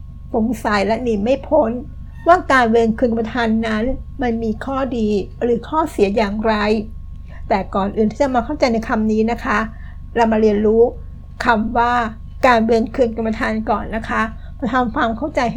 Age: 60-79